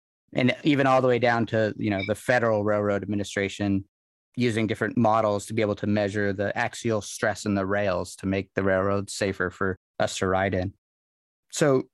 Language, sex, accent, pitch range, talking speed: English, male, American, 100-115 Hz, 190 wpm